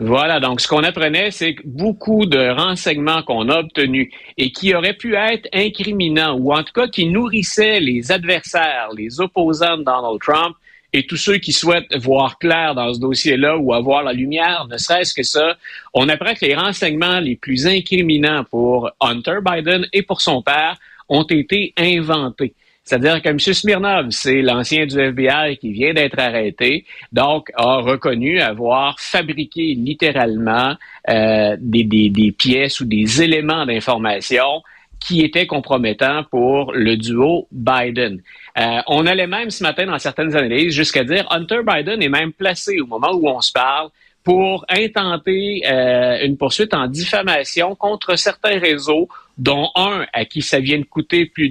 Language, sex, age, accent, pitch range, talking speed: French, male, 50-69, Canadian, 130-185 Hz, 165 wpm